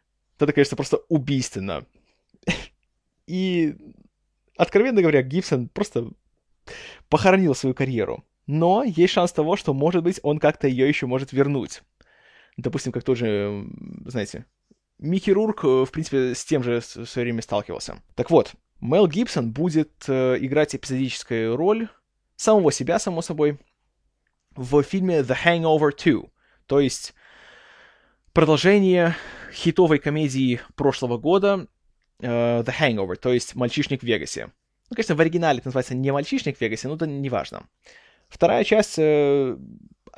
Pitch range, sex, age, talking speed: 130-175 Hz, male, 20-39, 130 wpm